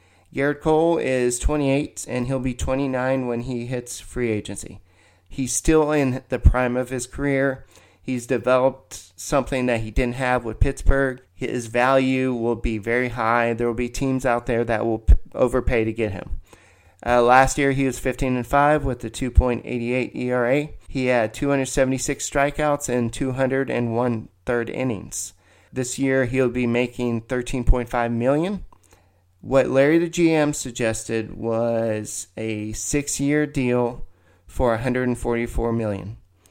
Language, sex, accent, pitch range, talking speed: English, male, American, 110-135 Hz, 140 wpm